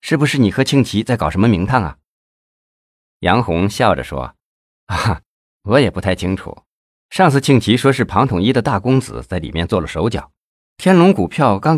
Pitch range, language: 85-125 Hz, Chinese